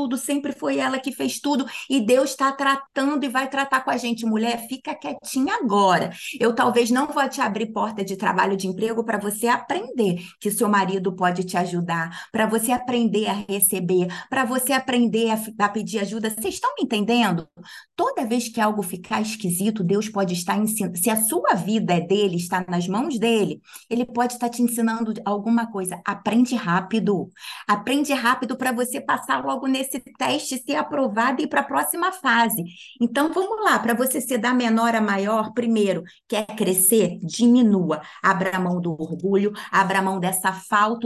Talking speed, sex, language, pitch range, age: 180 wpm, female, Portuguese, 190-255 Hz, 20-39